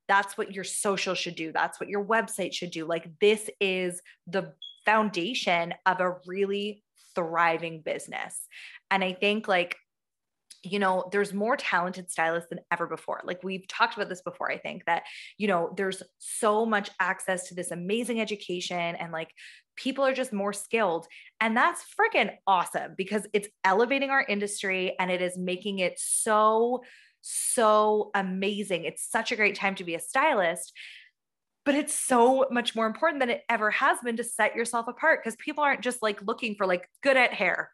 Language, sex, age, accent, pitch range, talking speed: English, female, 20-39, American, 180-230 Hz, 180 wpm